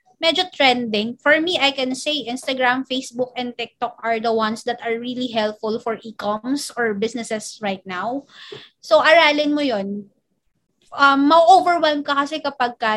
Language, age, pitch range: Filipino, 20-39, 225-275 Hz